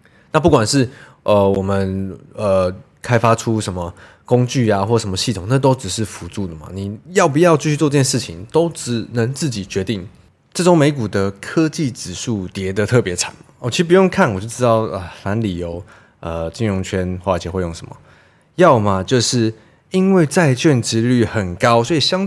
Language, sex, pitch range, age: Chinese, male, 105-155 Hz, 20-39